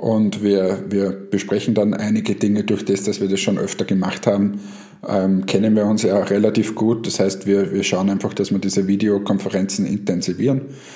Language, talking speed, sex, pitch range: German, 190 wpm, male, 100-115 Hz